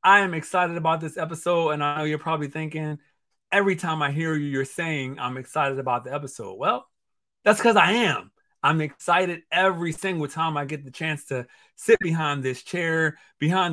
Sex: male